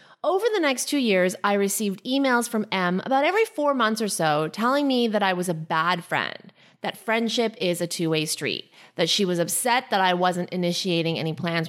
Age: 30-49